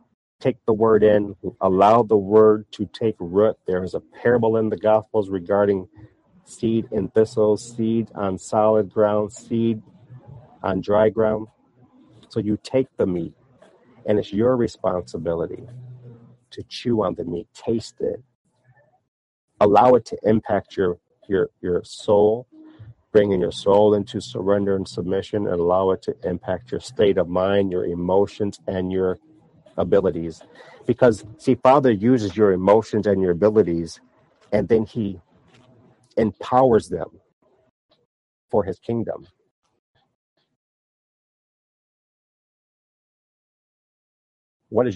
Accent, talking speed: American, 125 wpm